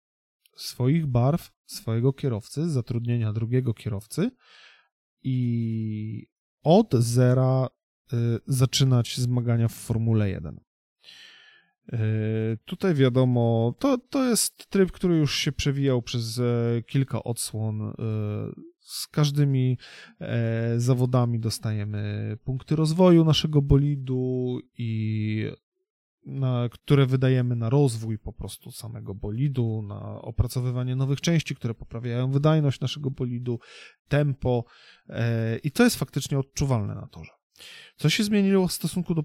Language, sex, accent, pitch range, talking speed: Polish, male, native, 115-145 Hz, 105 wpm